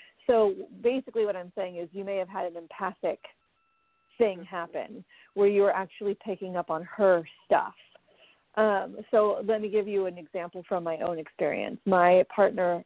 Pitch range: 175-215 Hz